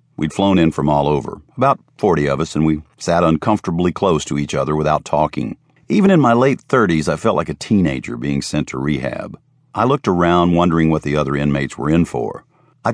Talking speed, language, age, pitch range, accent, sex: 215 wpm, English, 50-69, 75-95 Hz, American, male